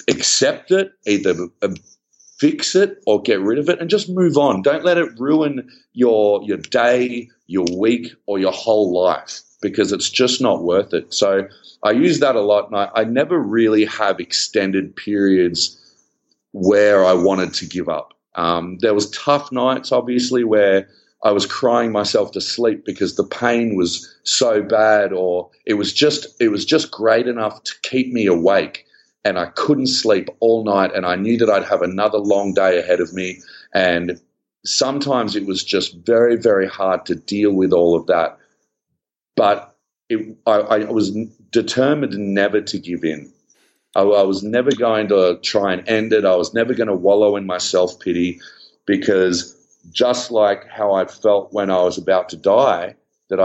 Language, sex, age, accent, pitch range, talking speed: English, male, 40-59, Australian, 95-125 Hz, 175 wpm